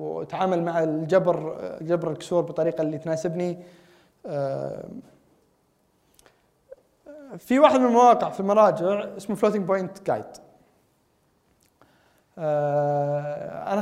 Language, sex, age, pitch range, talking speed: Arabic, male, 20-39, 165-225 Hz, 85 wpm